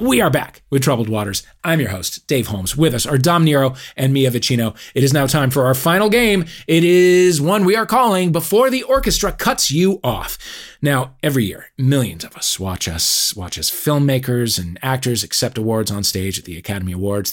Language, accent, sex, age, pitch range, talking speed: English, American, male, 30-49, 115-160 Hz, 210 wpm